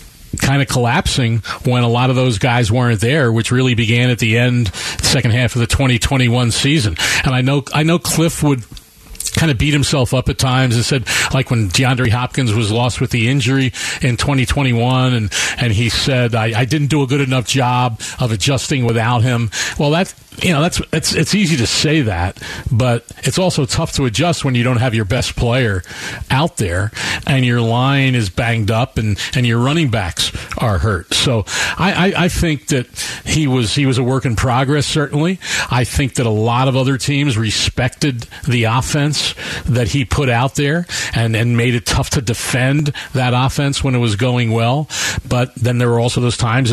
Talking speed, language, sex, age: 205 wpm, English, male, 40-59